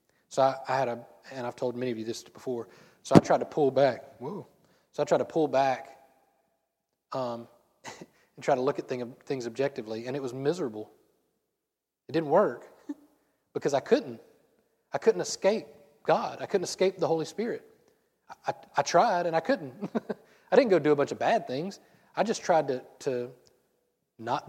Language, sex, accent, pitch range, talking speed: English, male, American, 130-170 Hz, 190 wpm